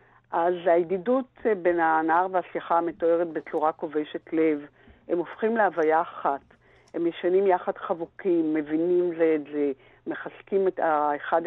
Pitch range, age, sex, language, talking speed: 160-190 Hz, 50-69, female, Hebrew, 120 wpm